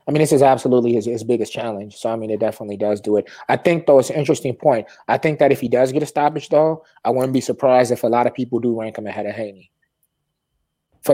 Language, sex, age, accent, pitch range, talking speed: English, male, 20-39, American, 110-135 Hz, 270 wpm